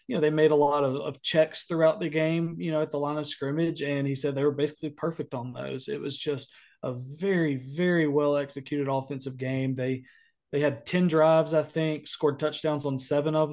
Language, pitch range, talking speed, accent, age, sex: English, 140-160 Hz, 220 wpm, American, 20-39, male